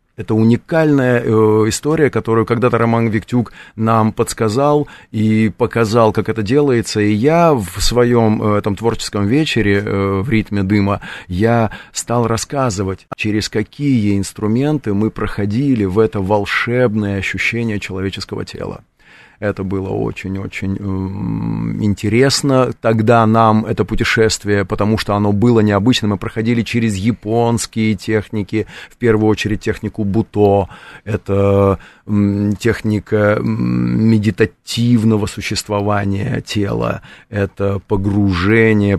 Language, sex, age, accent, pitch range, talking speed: Russian, male, 30-49, native, 100-115 Hz, 110 wpm